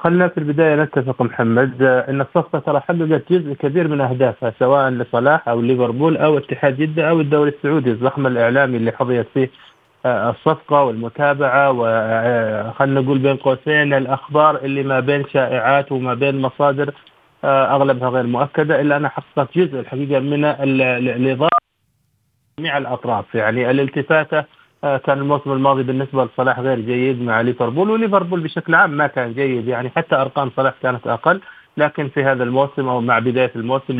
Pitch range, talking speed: 125-145 Hz, 155 wpm